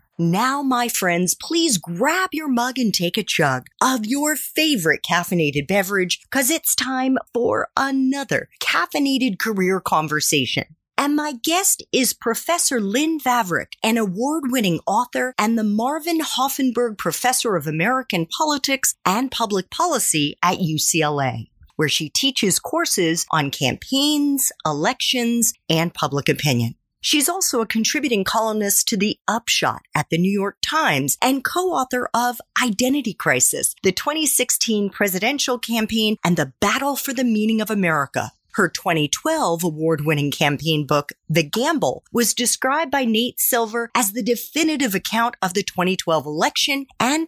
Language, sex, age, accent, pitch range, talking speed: English, female, 40-59, American, 170-265 Hz, 135 wpm